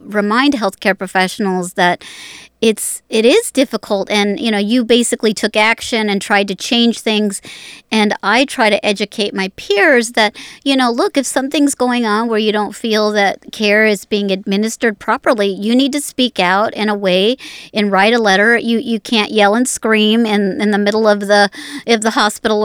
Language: English